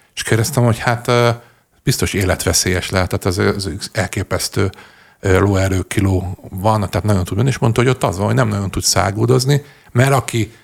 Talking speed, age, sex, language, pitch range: 170 wpm, 50-69, male, Hungarian, 95-120 Hz